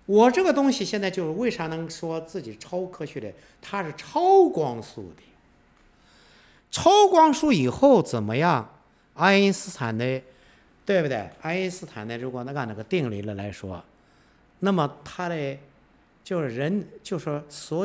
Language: Chinese